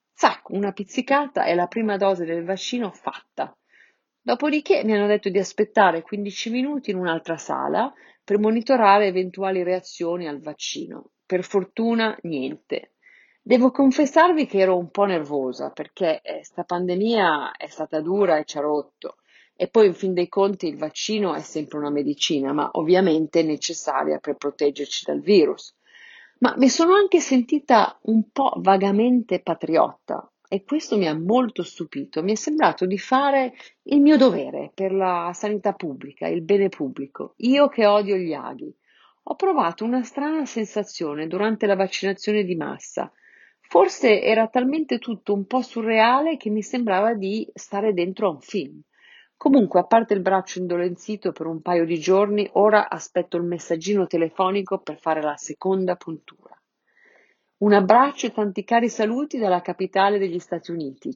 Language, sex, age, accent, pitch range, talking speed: Italian, female, 40-59, native, 175-230 Hz, 155 wpm